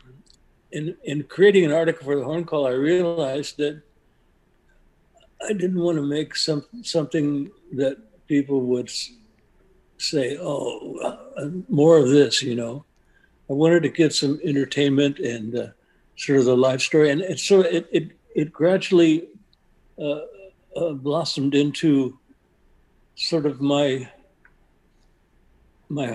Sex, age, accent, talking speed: male, 60-79, American, 130 wpm